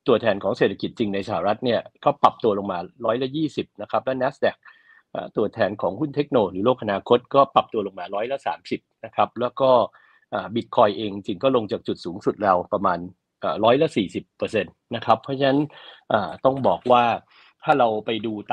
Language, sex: Thai, male